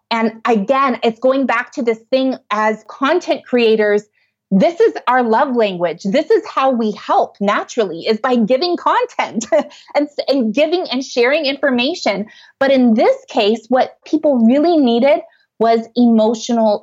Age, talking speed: 20-39, 150 wpm